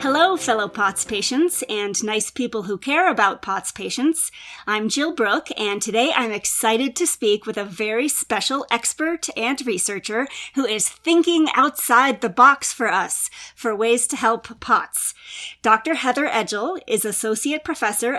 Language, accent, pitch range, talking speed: English, American, 210-275 Hz, 155 wpm